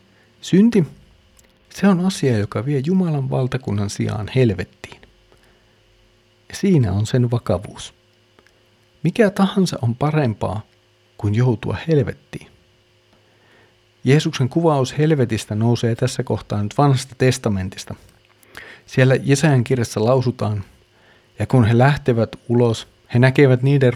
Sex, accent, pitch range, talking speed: male, native, 105-130 Hz, 105 wpm